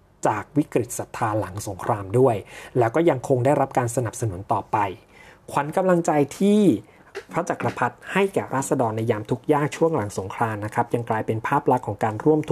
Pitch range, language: 115-150 Hz, Thai